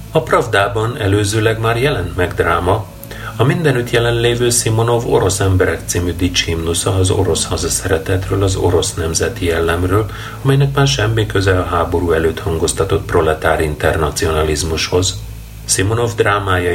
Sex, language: male, Hungarian